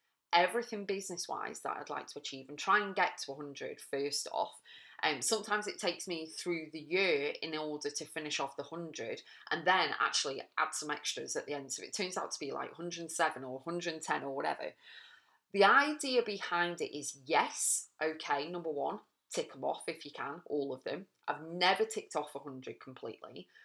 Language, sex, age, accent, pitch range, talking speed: English, female, 30-49, British, 150-200 Hz, 195 wpm